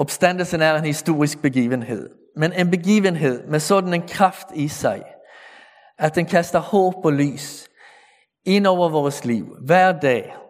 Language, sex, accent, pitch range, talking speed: Danish, male, Swedish, 145-185 Hz, 150 wpm